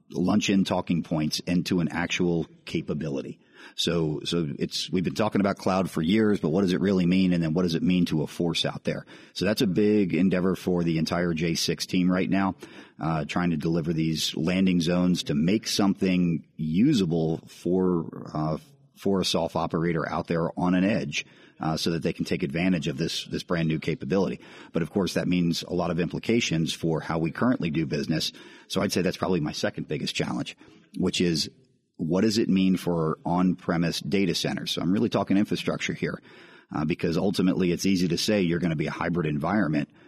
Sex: male